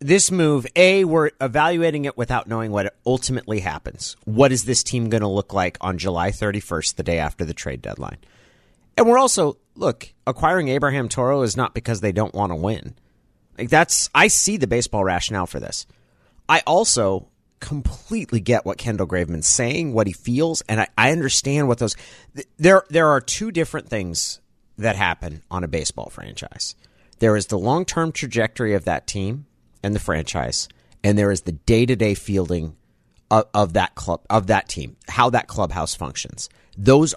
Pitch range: 100-150 Hz